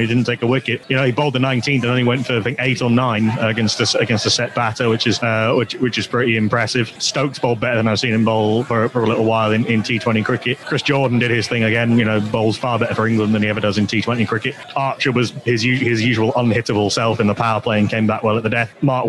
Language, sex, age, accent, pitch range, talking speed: English, male, 30-49, British, 115-135 Hz, 285 wpm